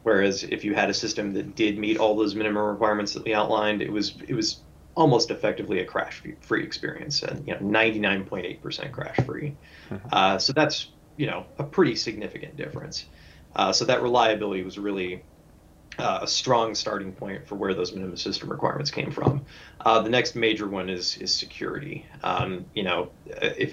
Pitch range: 95-110 Hz